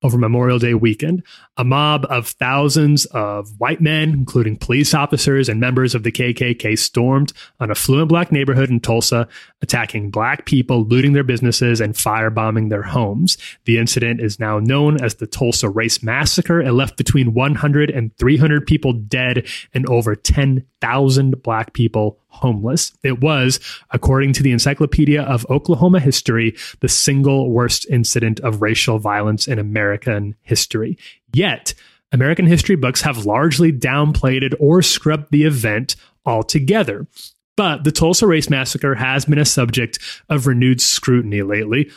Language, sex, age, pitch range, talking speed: English, male, 30-49, 115-145 Hz, 150 wpm